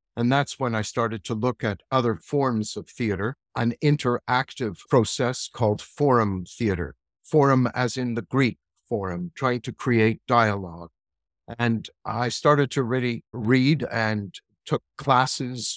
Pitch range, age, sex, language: 110-140 Hz, 60-79, male, English